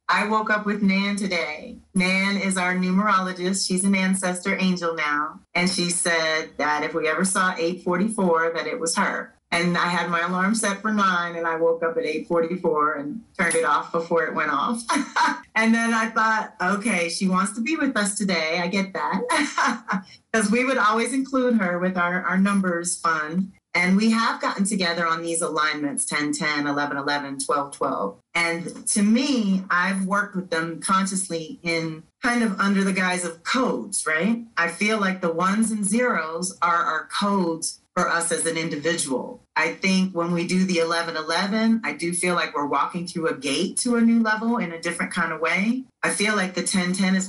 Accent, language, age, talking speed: American, English, 30-49, 200 wpm